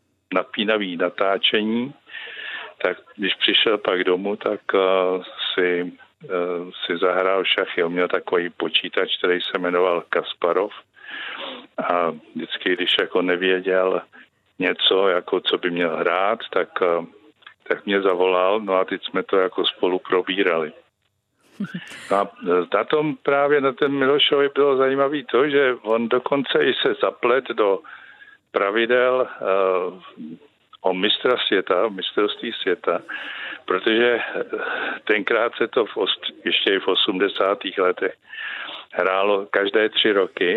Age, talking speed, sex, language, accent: 50-69, 110 wpm, male, Czech, native